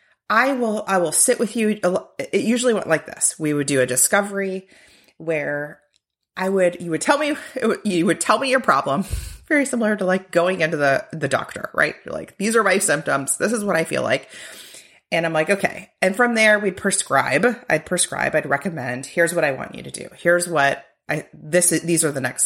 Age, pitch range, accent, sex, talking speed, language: 30-49, 155-210 Hz, American, female, 215 wpm, English